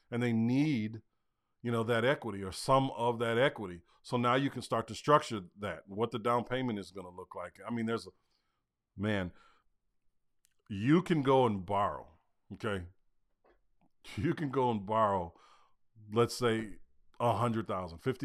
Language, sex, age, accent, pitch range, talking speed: English, male, 40-59, American, 100-120 Hz, 160 wpm